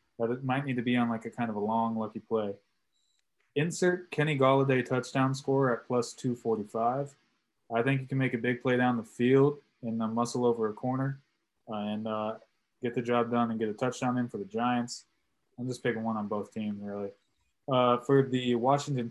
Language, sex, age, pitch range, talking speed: English, male, 20-39, 115-135 Hz, 205 wpm